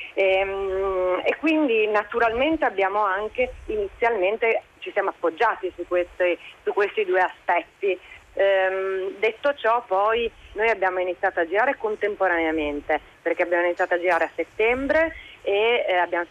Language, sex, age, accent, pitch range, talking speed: Italian, female, 30-49, native, 180-220 Hz, 135 wpm